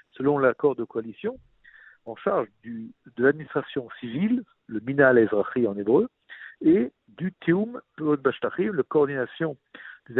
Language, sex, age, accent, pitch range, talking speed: French, male, 60-79, French, 125-175 Hz, 130 wpm